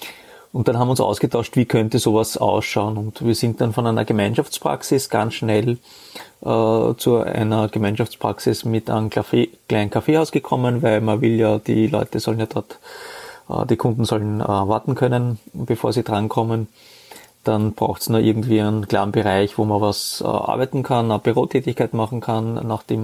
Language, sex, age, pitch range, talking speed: German, male, 30-49, 110-125 Hz, 175 wpm